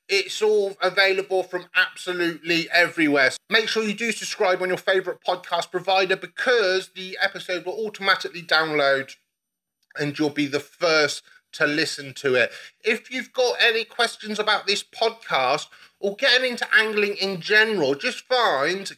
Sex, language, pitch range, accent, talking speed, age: male, English, 165-215 Hz, British, 150 wpm, 30-49